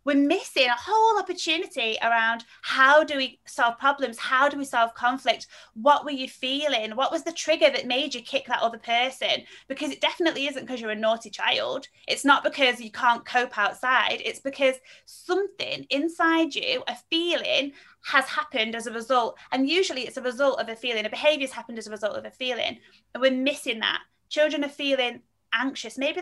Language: English